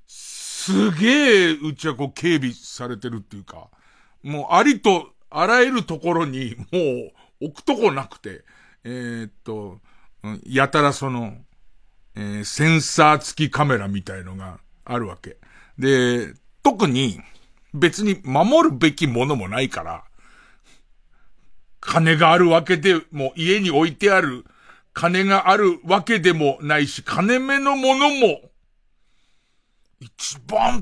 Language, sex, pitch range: Japanese, male, 125-195 Hz